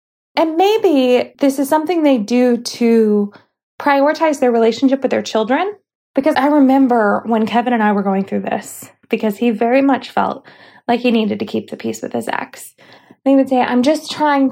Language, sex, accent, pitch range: English, female, American, 235-305 Hz